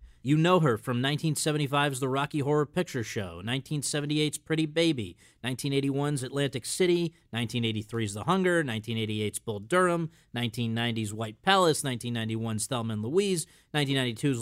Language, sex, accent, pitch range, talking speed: English, male, American, 120-160 Hz, 125 wpm